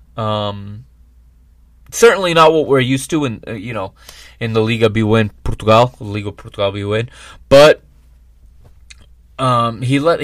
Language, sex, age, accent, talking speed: English, male, 30-49, American, 135 wpm